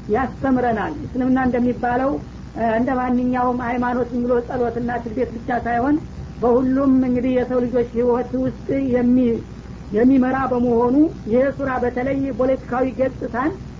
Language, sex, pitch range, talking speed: Amharic, female, 240-265 Hz, 105 wpm